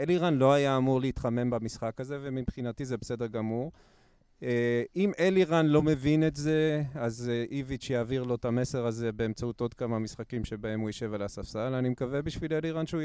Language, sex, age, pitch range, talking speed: Hebrew, male, 30-49, 115-140 Hz, 175 wpm